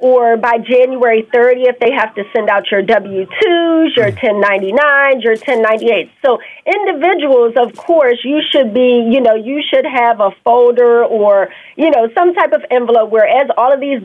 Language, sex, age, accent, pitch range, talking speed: English, female, 40-59, American, 220-270 Hz, 180 wpm